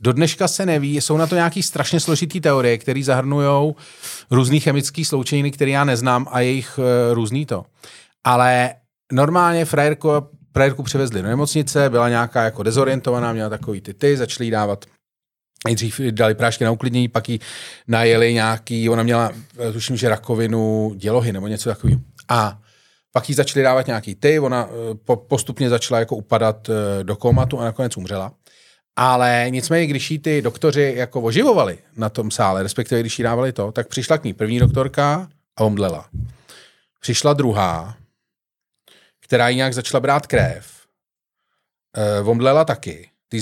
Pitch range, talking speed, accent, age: 115-140 Hz, 150 wpm, native, 30-49